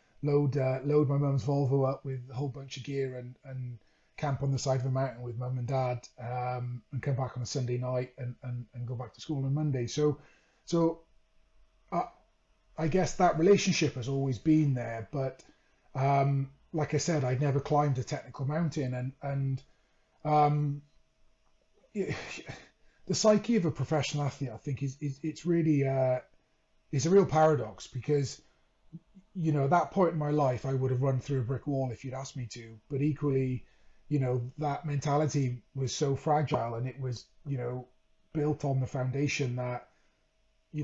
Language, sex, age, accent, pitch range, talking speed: English, male, 30-49, British, 130-150 Hz, 185 wpm